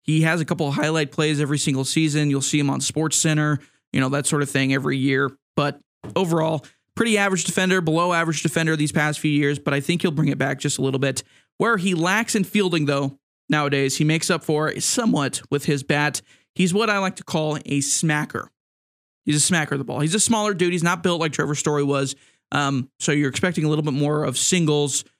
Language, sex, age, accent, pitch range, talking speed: English, male, 20-39, American, 140-170 Hz, 230 wpm